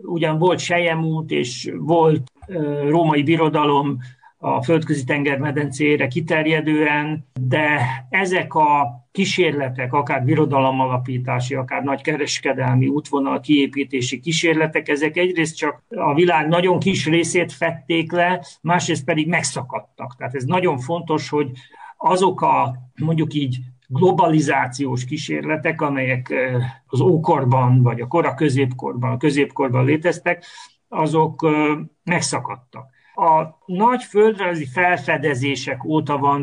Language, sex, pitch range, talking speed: Hungarian, male, 140-170 Hz, 105 wpm